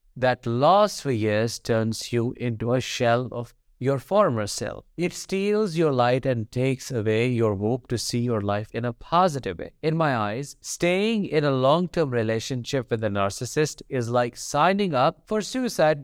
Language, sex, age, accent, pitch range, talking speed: English, male, 50-69, Indian, 120-170 Hz, 175 wpm